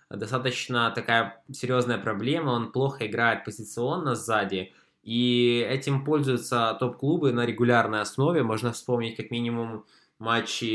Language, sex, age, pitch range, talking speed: Russian, male, 20-39, 110-125 Hz, 115 wpm